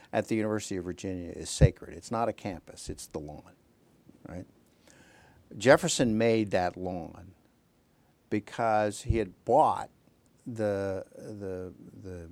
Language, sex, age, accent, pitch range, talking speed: English, male, 60-79, American, 95-115 Hz, 120 wpm